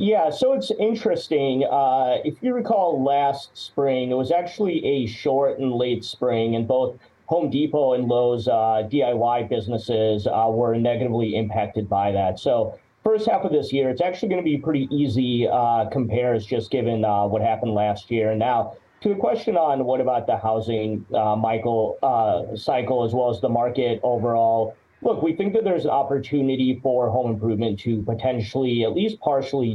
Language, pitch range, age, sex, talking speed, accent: English, 110-140 Hz, 30-49, male, 180 wpm, American